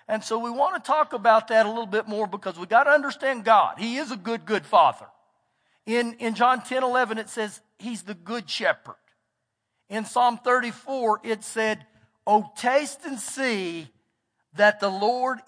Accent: American